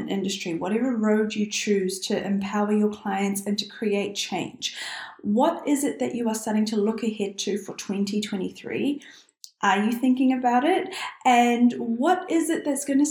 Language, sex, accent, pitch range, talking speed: English, female, Australian, 210-275 Hz, 175 wpm